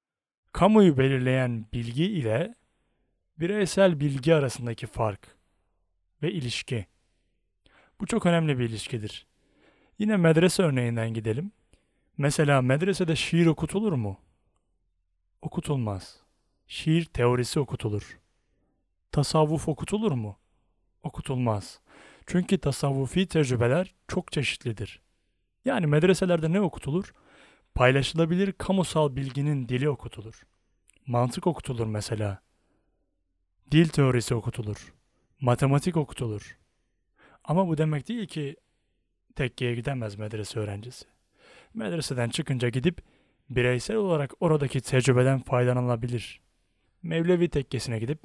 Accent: native